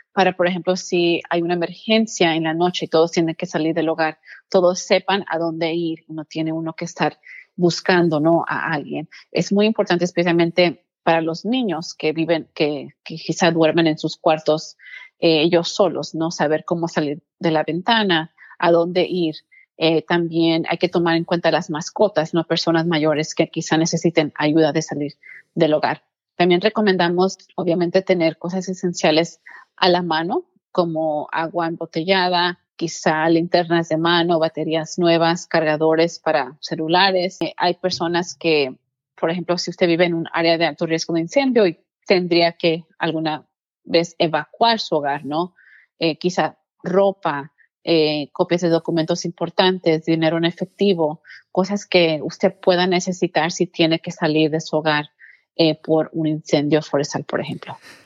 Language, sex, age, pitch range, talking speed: Spanish, female, 30-49, 160-180 Hz, 160 wpm